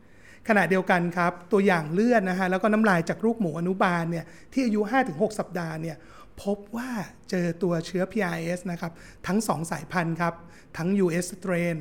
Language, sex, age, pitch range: Thai, male, 30-49, 175-210 Hz